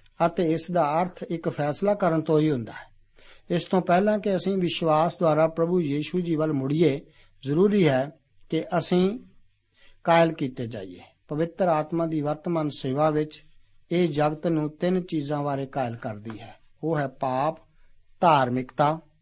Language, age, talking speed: Punjabi, 60-79, 155 wpm